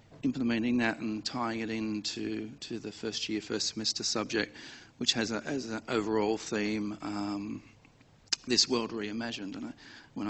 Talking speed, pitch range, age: 140 wpm, 110-125 Hz, 40-59